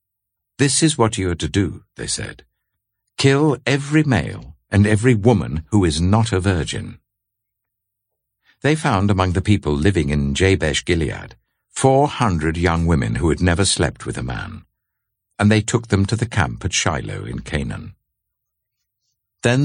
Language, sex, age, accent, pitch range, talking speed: English, male, 60-79, British, 85-115 Hz, 155 wpm